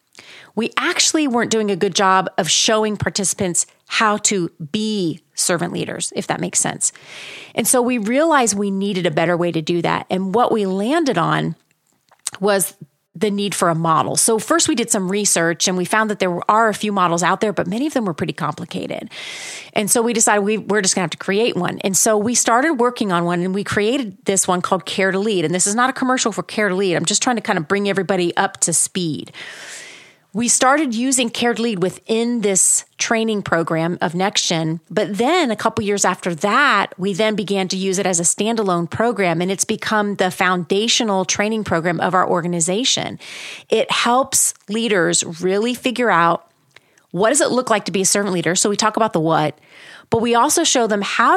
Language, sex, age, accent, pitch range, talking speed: English, female, 30-49, American, 185-230 Hz, 210 wpm